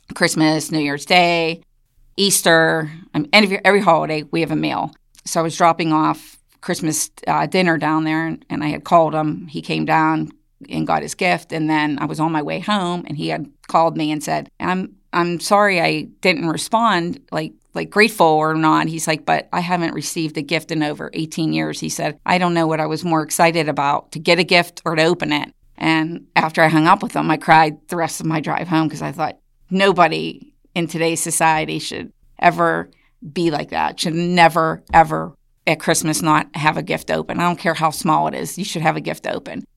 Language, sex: English, female